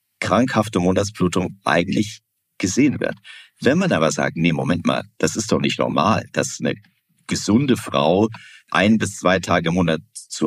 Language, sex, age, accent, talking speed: German, male, 50-69, German, 160 wpm